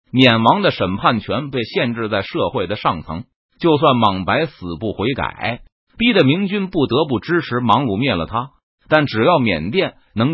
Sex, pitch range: male, 110-160 Hz